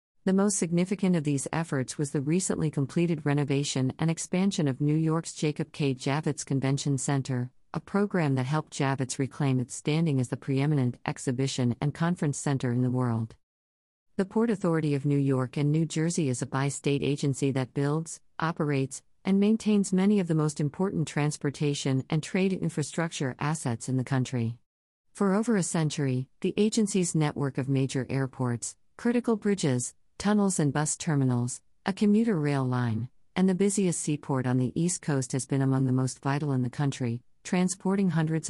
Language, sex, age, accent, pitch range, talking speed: English, female, 40-59, American, 130-165 Hz, 170 wpm